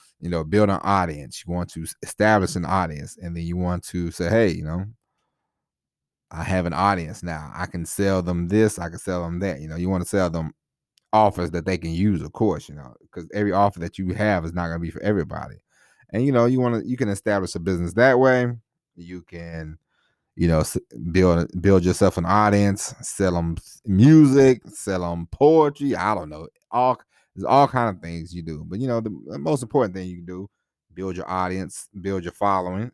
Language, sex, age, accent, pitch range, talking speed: English, male, 30-49, American, 85-105 Hz, 215 wpm